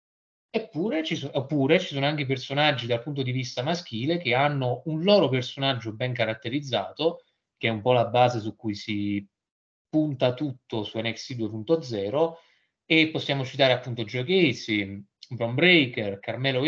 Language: Italian